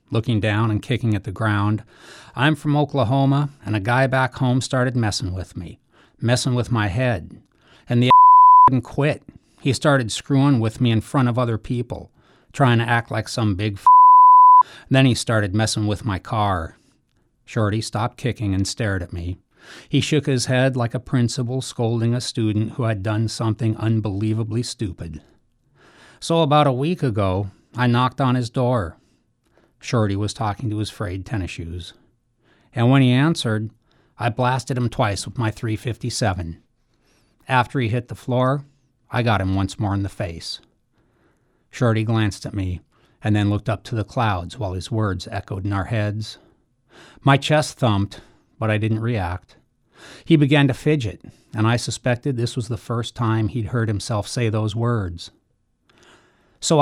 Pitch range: 105-130 Hz